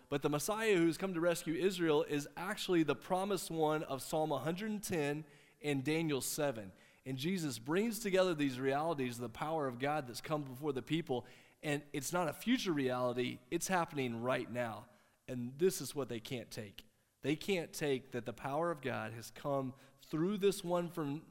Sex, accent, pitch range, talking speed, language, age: male, American, 125-175 Hz, 185 wpm, English, 30-49